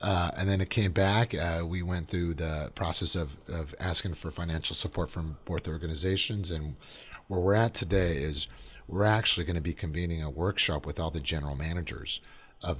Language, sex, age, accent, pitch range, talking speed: English, male, 30-49, American, 80-95 Hz, 190 wpm